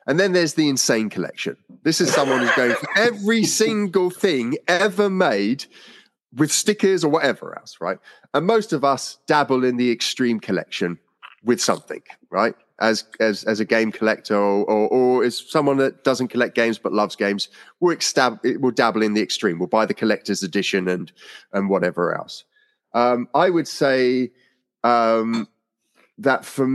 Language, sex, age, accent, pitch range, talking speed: English, male, 30-49, British, 105-135 Hz, 165 wpm